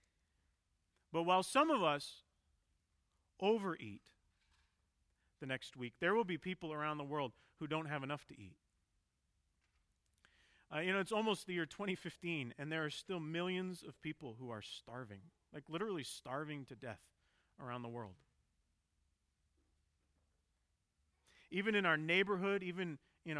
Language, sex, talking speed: English, male, 140 wpm